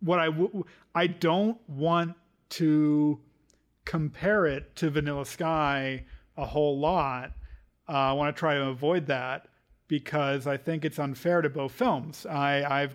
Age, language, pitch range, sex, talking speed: 40-59, English, 140-170 Hz, male, 150 wpm